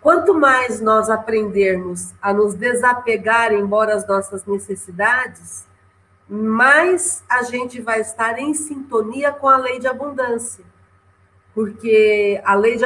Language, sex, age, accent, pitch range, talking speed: Portuguese, female, 40-59, Brazilian, 200-275 Hz, 125 wpm